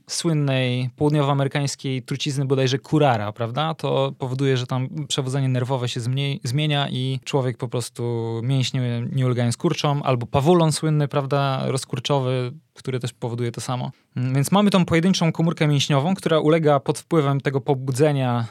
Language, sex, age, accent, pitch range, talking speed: Polish, male, 20-39, native, 130-160 Hz, 145 wpm